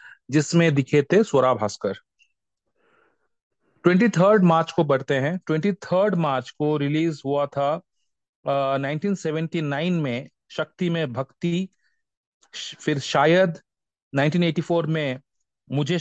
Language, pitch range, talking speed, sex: Hindi, 140-170 Hz, 100 wpm, male